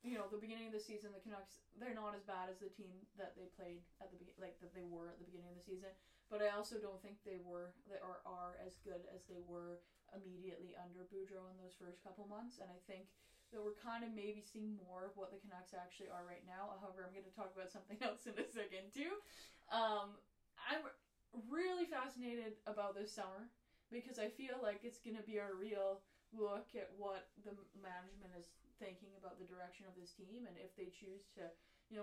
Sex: female